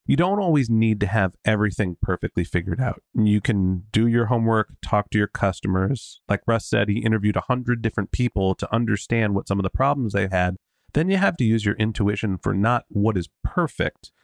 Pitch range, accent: 100-130 Hz, American